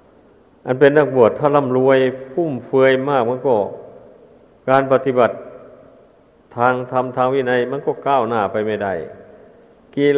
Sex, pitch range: male, 110-135 Hz